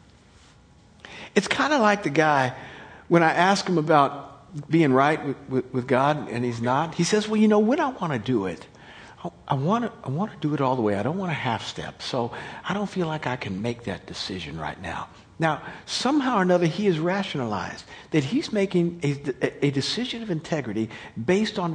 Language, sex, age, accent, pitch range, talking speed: English, male, 50-69, American, 165-255 Hz, 205 wpm